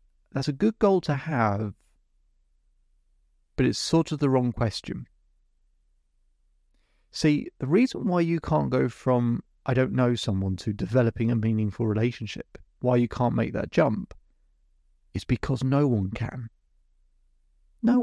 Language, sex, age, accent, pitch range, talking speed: English, male, 30-49, British, 80-135 Hz, 140 wpm